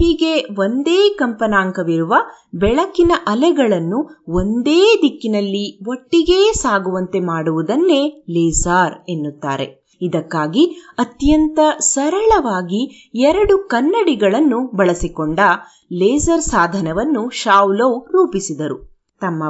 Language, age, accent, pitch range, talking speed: Kannada, 30-49, native, 185-300 Hz, 70 wpm